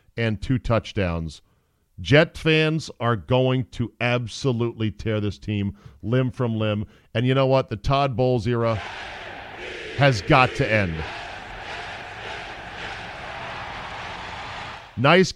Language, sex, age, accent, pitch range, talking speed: English, male, 40-59, American, 100-140 Hz, 110 wpm